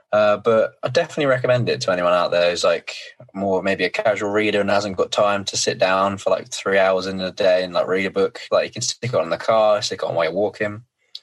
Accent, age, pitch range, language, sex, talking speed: British, 20-39, 95-130 Hz, English, male, 265 wpm